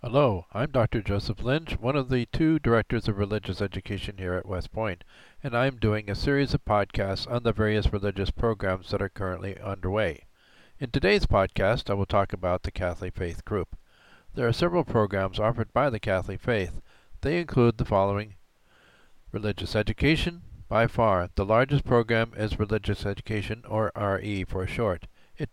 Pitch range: 100-125 Hz